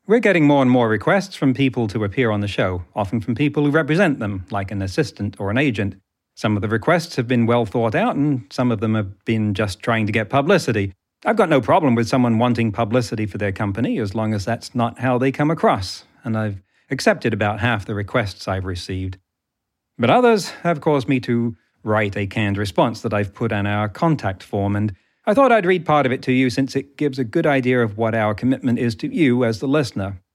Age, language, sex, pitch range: 40-59, English, male, 105-150 Hz